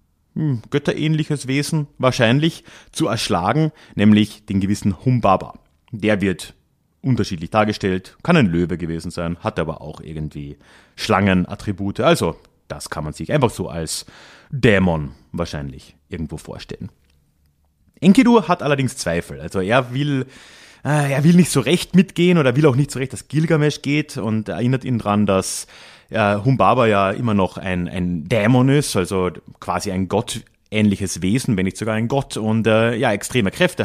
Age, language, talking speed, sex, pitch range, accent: 30-49, German, 150 wpm, male, 95-145 Hz, German